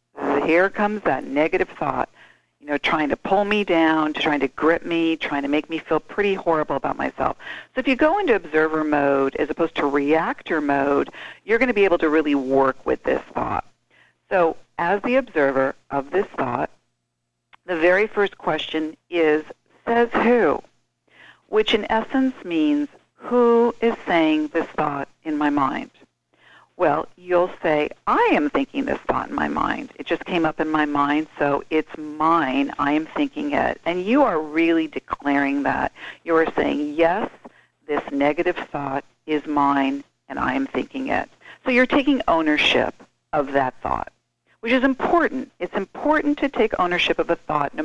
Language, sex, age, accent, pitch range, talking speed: English, female, 50-69, American, 150-230 Hz, 175 wpm